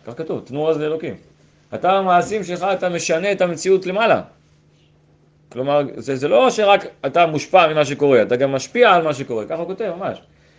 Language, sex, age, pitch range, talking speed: Hebrew, male, 30-49, 115-165 Hz, 180 wpm